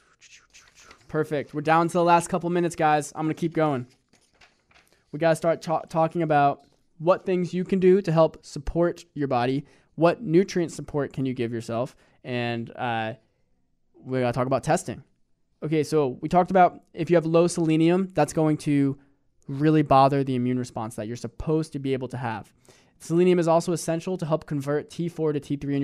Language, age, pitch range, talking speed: English, 20-39, 125-165 Hz, 195 wpm